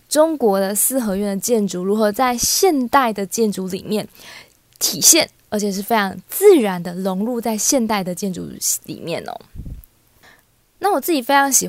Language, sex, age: Chinese, female, 20-39